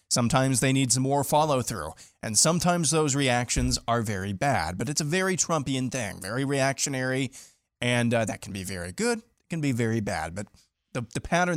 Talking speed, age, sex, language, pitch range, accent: 190 wpm, 20-39, male, English, 110-135 Hz, American